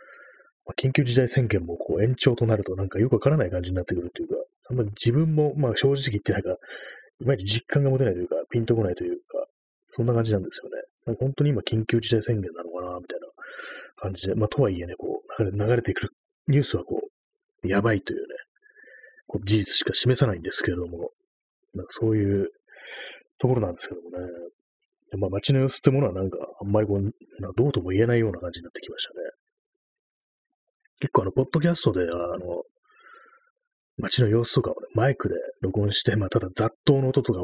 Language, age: Japanese, 30-49